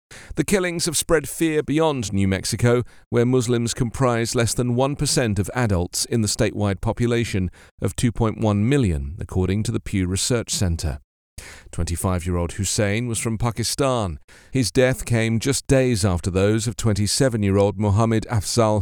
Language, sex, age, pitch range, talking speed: English, male, 40-59, 95-135 Hz, 145 wpm